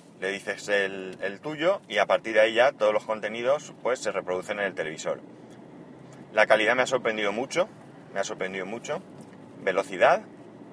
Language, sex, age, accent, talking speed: Spanish, male, 30-49, Spanish, 175 wpm